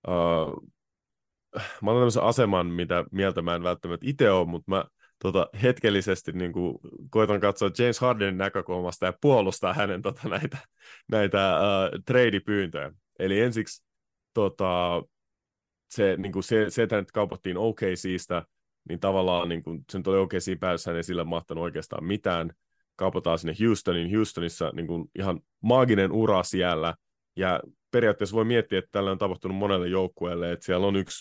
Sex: male